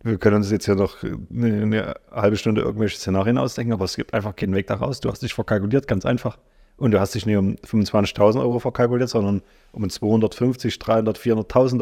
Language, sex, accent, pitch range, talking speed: German, male, German, 105-125 Hz, 195 wpm